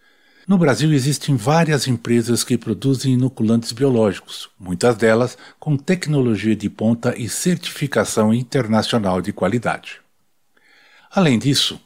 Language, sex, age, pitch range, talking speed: Portuguese, male, 60-79, 110-150 Hz, 110 wpm